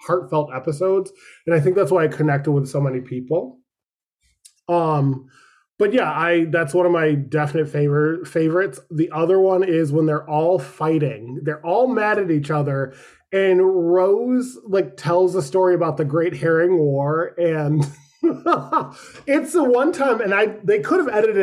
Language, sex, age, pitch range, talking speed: English, male, 20-39, 155-195 Hz, 170 wpm